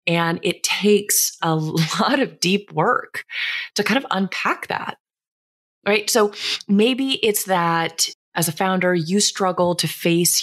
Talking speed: 145 wpm